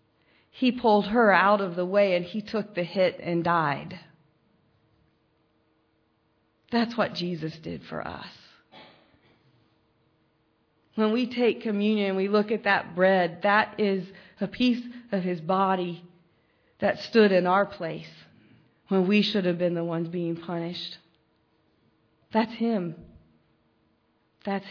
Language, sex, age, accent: English, female, 40-59, American